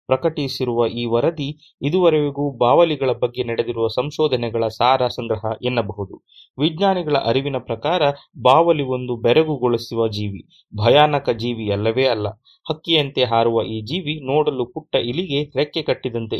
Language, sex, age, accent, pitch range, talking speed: Kannada, male, 30-49, native, 120-160 Hz, 115 wpm